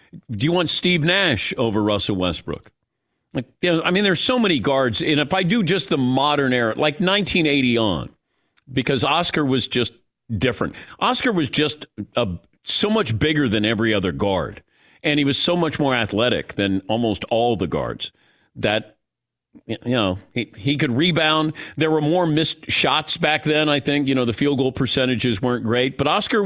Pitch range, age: 120-155 Hz, 50-69